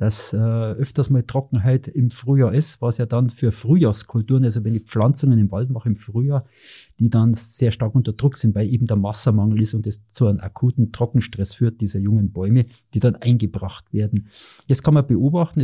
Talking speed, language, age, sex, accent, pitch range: 200 wpm, German, 50-69, male, German, 115-135 Hz